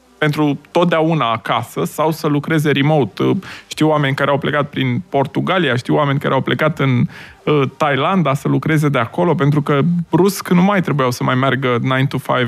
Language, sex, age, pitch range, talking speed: Romanian, male, 20-39, 135-165 Hz, 185 wpm